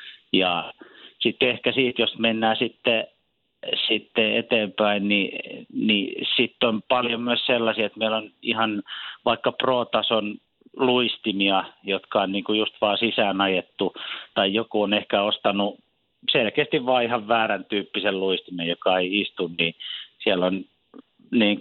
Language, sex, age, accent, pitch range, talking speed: Finnish, male, 50-69, native, 95-115 Hz, 135 wpm